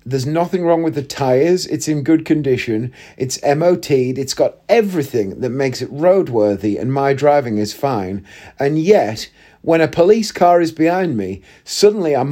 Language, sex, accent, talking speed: English, male, British, 170 wpm